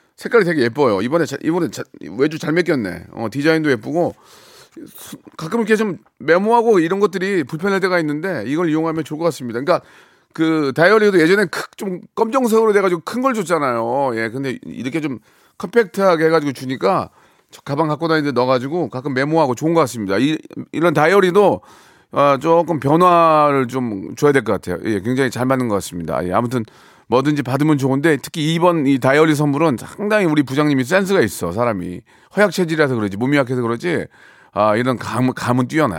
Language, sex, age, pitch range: Korean, male, 40-59, 130-175 Hz